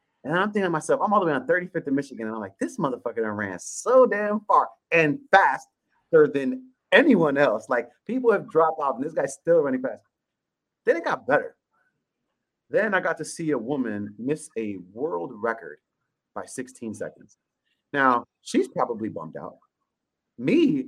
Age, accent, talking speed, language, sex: 30-49, American, 180 wpm, English, male